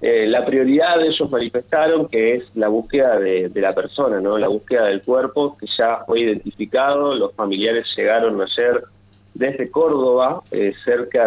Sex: male